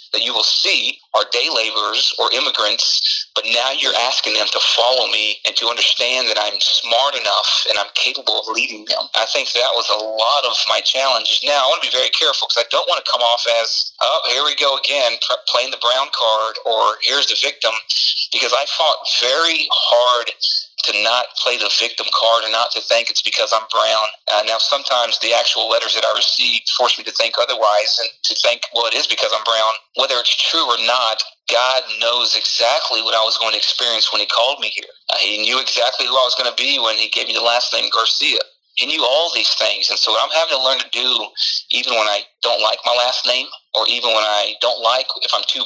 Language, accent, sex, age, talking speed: English, American, male, 40-59, 235 wpm